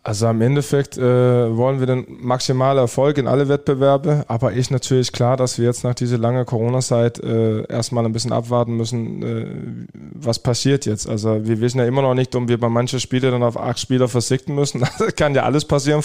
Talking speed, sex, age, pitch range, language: 215 wpm, male, 20-39, 120-140 Hz, German